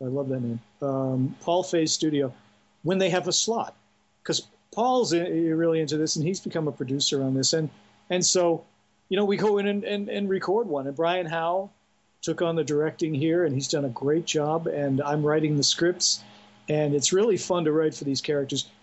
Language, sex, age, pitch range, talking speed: English, male, 50-69, 135-170 Hz, 215 wpm